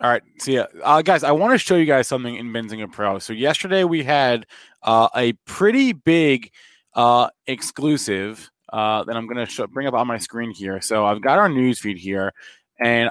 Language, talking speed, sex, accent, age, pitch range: English, 210 wpm, male, American, 20-39, 110-150 Hz